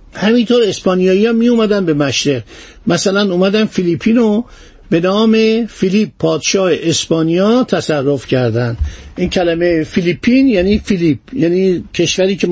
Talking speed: 115 wpm